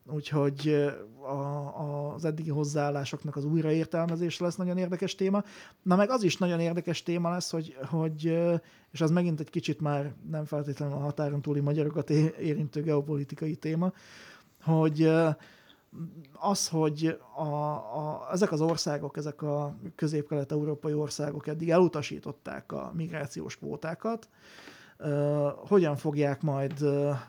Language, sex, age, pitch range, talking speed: Hungarian, male, 30-49, 145-165 Hz, 125 wpm